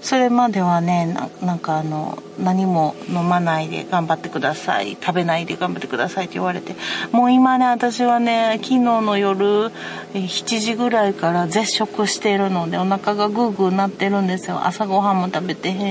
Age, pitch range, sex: 40-59, 170-220 Hz, female